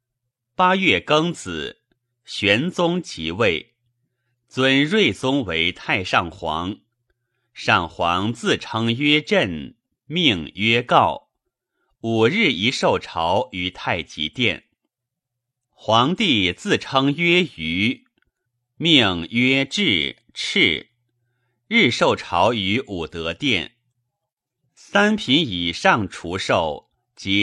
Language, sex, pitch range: Chinese, male, 105-135 Hz